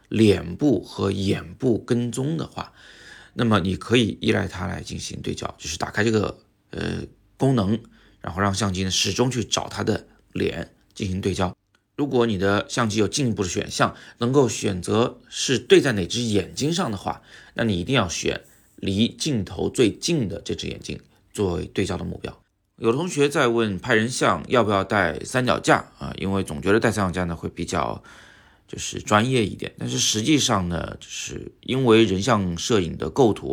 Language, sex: Chinese, male